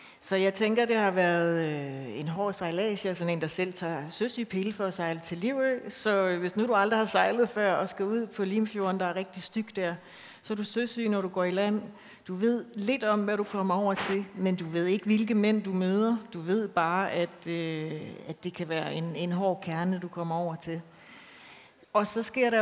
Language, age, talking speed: Danish, 60-79, 225 wpm